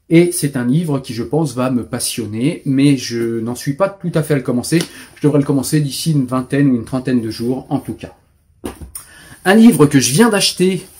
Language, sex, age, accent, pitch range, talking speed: French, male, 30-49, French, 115-145 Hz, 230 wpm